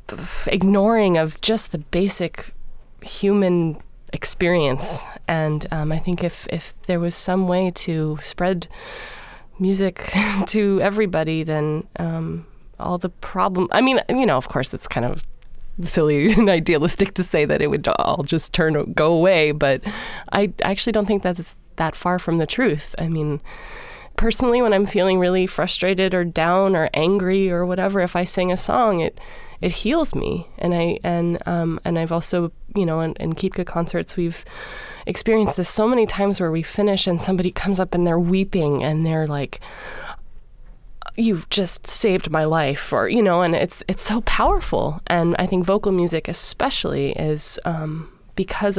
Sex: female